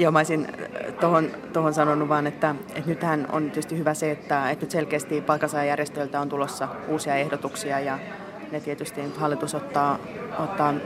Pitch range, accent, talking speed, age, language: 140-155 Hz, native, 155 wpm, 20-39, Finnish